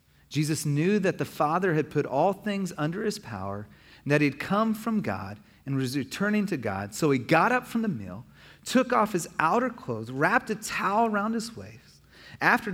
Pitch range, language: 140-180 Hz, English